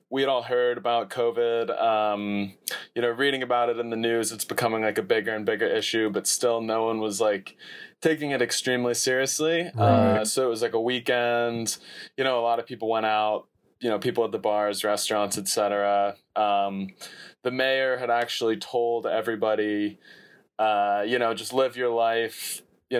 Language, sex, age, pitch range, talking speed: English, male, 20-39, 105-120 Hz, 185 wpm